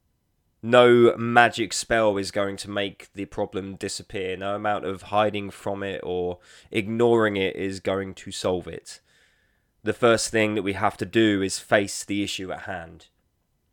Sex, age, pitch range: male, 20-39, 95-115 Hz